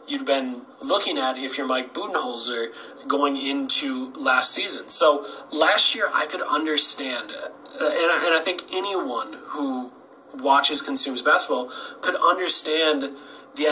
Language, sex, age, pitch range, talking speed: Greek, male, 30-49, 125-155 Hz, 135 wpm